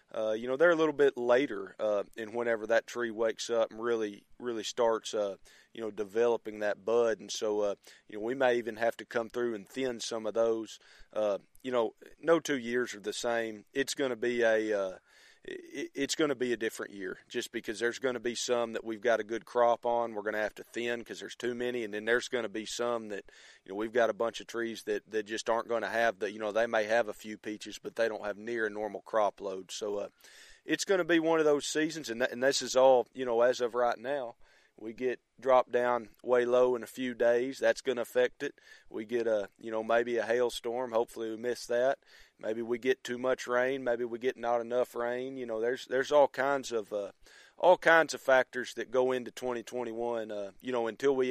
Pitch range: 110-125 Hz